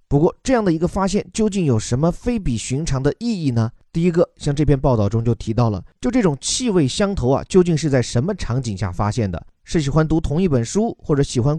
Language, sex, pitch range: Chinese, male, 120-185 Hz